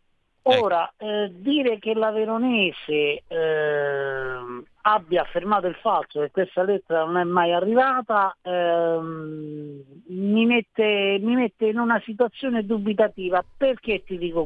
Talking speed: 125 wpm